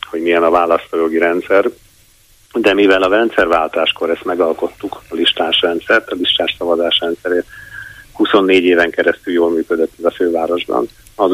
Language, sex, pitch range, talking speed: Hungarian, male, 85-110 Hz, 145 wpm